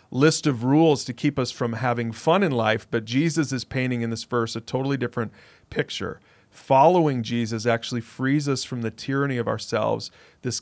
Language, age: English, 40-59